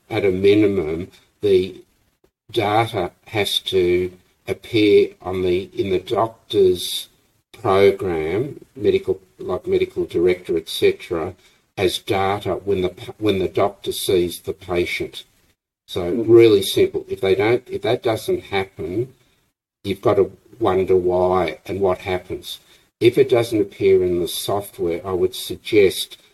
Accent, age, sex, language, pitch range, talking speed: Australian, 60-79, male, English, 365-395 Hz, 130 wpm